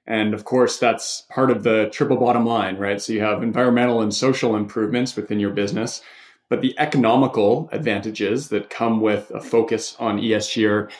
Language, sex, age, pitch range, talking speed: English, male, 20-39, 110-130 Hz, 180 wpm